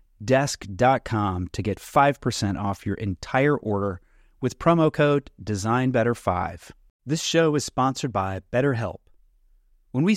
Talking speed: 120 wpm